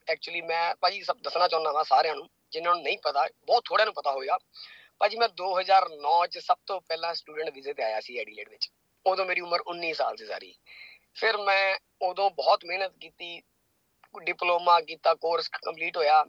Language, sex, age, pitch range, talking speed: Punjabi, female, 20-39, 165-215 Hz, 175 wpm